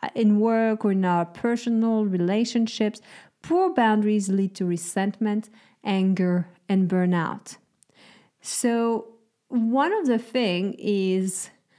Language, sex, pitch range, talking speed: English, female, 180-230 Hz, 105 wpm